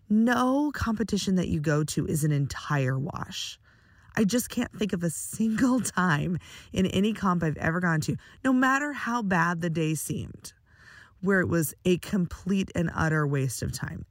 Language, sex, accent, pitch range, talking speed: English, female, American, 145-200 Hz, 180 wpm